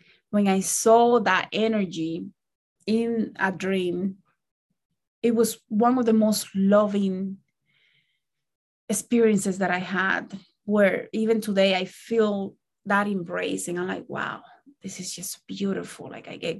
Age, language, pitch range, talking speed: 20-39, English, 180-215 Hz, 130 wpm